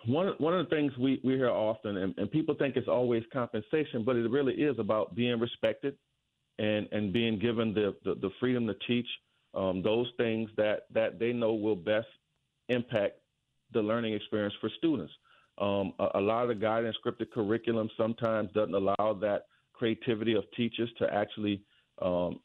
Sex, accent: male, American